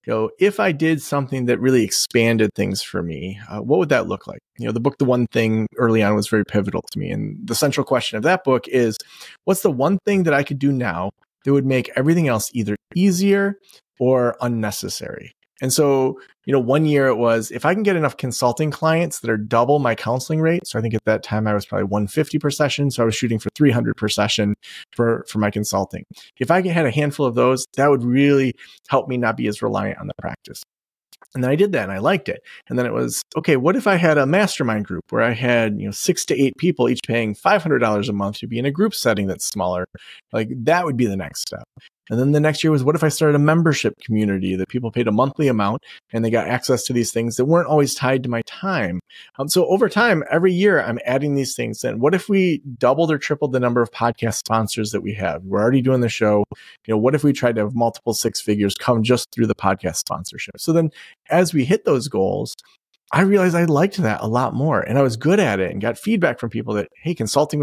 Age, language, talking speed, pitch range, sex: 30-49, English, 250 wpm, 110-155 Hz, male